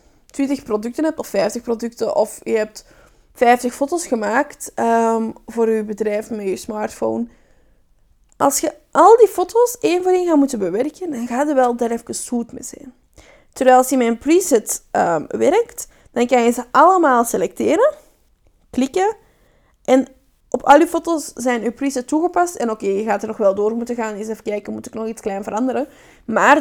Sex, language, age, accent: female, Dutch, 20-39, Dutch